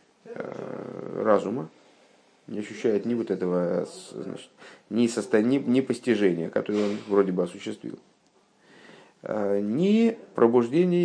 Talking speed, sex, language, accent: 85 wpm, male, Russian, native